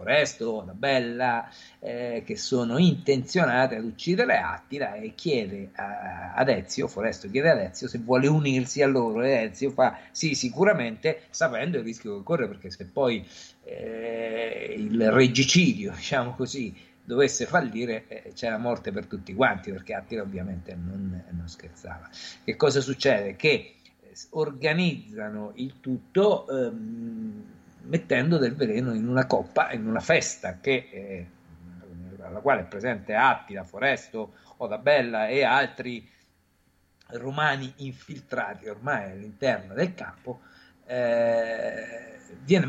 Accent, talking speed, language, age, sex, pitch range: native, 130 wpm, Italian, 50-69, male, 100-140 Hz